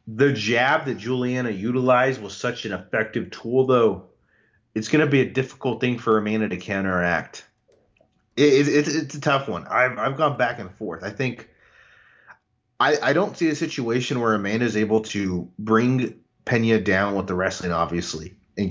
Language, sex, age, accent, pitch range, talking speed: English, male, 30-49, American, 95-120 Hz, 180 wpm